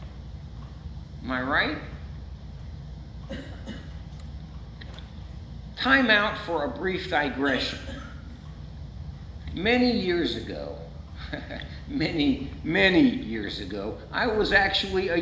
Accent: American